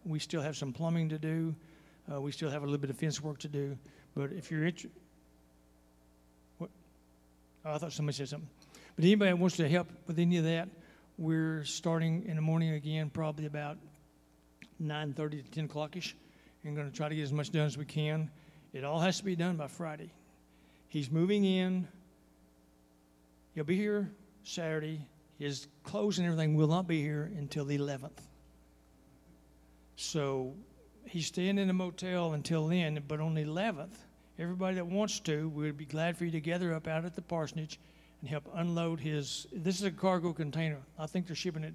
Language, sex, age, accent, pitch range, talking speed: English, male, 60-79, American, 145-165 Hz, 190 wpm